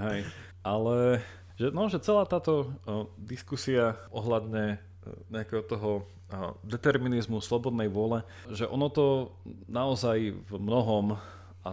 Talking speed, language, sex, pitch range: 120 wpm, Slovak, male, 90-110 Hz